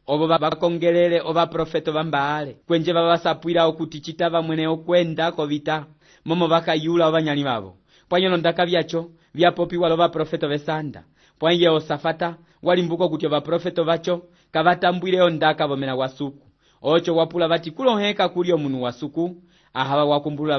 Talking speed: 135 wpm